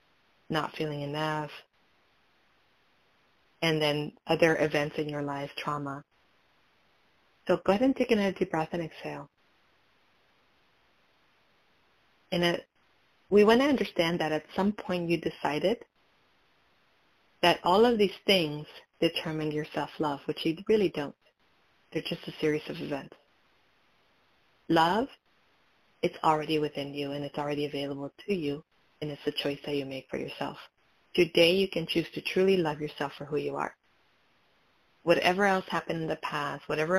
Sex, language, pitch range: female, English, 150-175 Hz